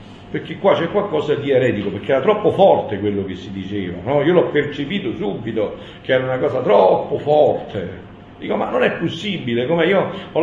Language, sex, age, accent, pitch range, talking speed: Italian, male, 50-69, native, 120-195 Hz, 190 wpm